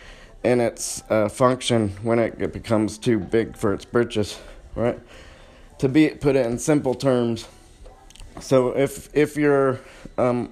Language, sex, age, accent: English, male, 30-49, American